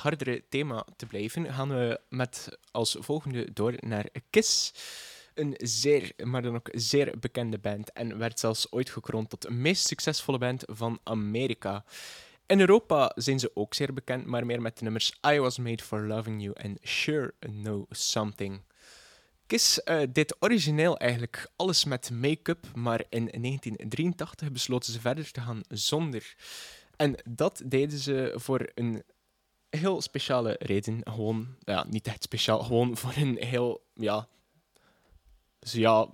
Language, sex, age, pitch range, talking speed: Dutch, male, 10-29, 110-140 Hz, 150 wpm